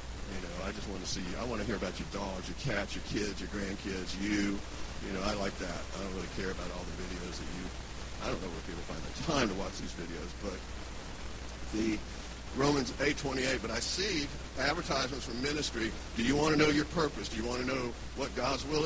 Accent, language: American, English